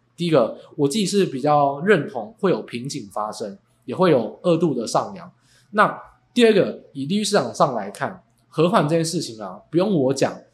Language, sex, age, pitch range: Chinese, male, 20-39, 135-185 Hz